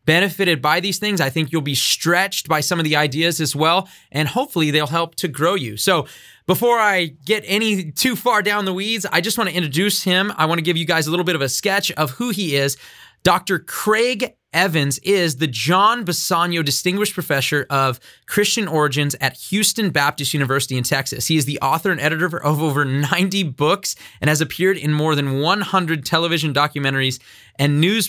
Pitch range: 135-185 Hz